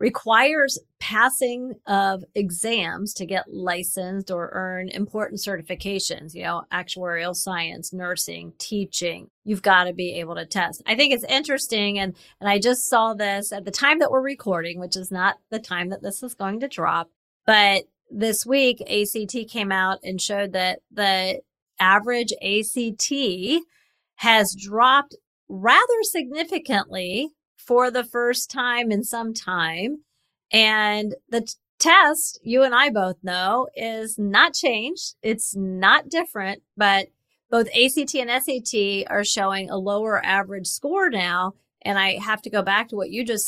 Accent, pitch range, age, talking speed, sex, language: American, 185-250 Hz, 30-49, 150 wpm, female, English